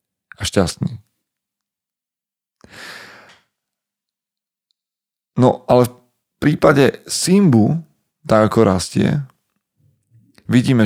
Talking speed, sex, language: 60 wpm, male, Slovak